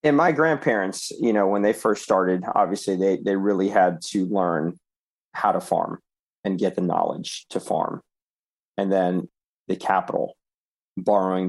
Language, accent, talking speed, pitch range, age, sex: English, American, 155 wpm, 90-105 Hz, 40-59, male